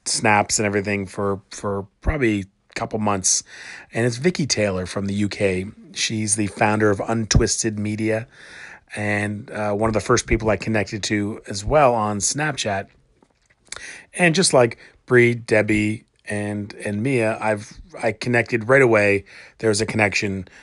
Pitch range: 105-120 Hz